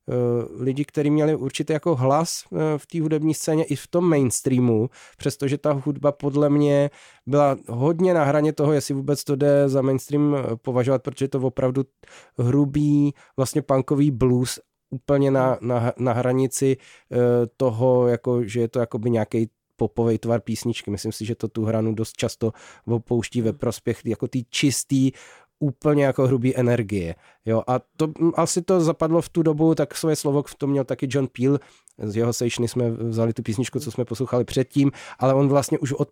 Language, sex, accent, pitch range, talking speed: Czech, male, native, 120-145 Hz, 175 wpm